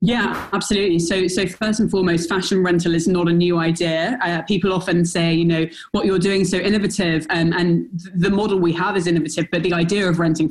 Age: 20-39